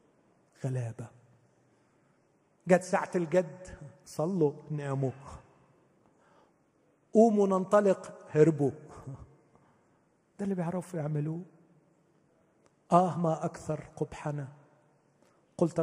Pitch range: 140-170 Hz